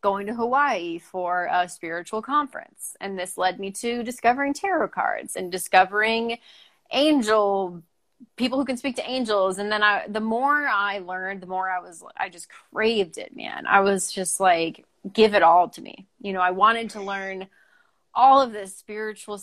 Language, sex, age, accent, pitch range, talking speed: English, female, 30-49, American, 185-235 Hz, 180 wpm